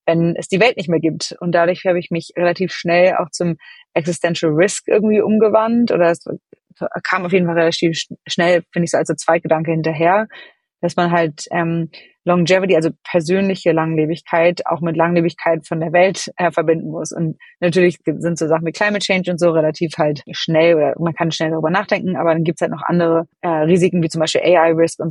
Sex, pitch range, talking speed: female, 165-190 Hz, 200 wpm